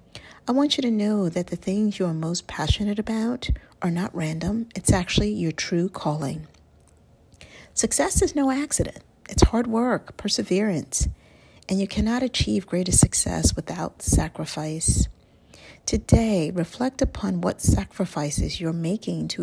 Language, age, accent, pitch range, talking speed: English, 50-69, American, 155-205 Hz, 140 wpm